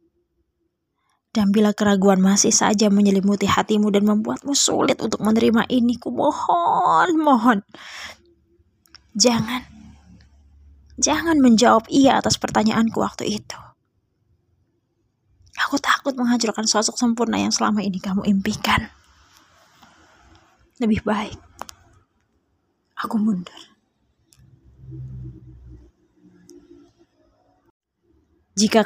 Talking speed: 80 wpm